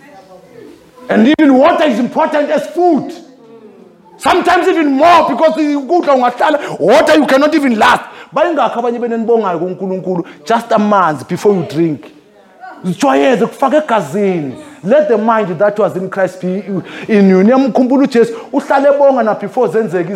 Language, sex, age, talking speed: English, male, 30-49, 95 wpm